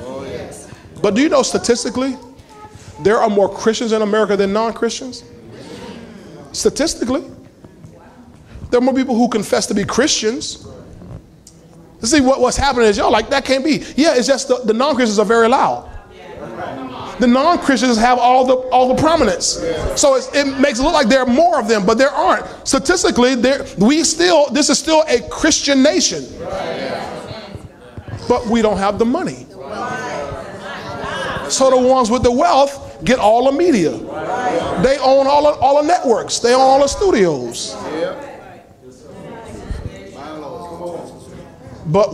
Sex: male